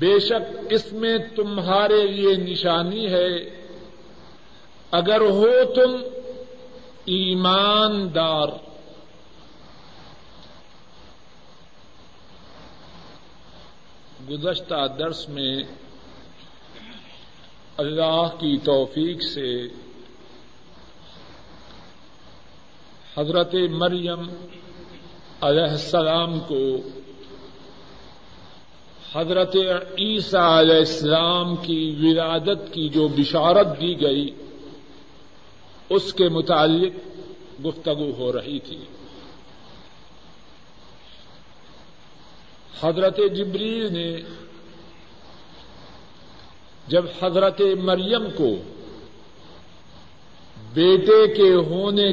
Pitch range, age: 155-195 Hz, 50-69